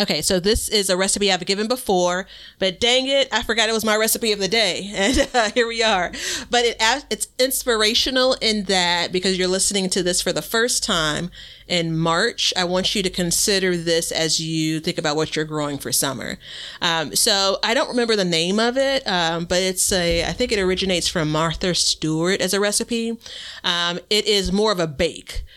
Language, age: English, 30-49